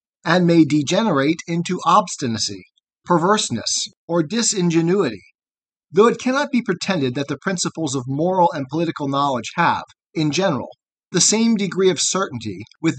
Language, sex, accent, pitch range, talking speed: English, male, American, 140-195 Hz, 140 wpm